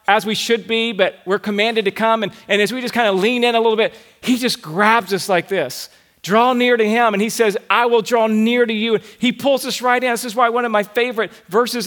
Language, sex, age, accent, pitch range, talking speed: English, male, 40-59, American, 195-245 Hz, 275 wpm